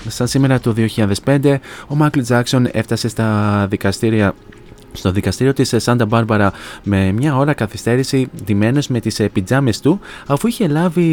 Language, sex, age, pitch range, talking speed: Greek, male, 20-39, 105-125 Hz, 145 wpm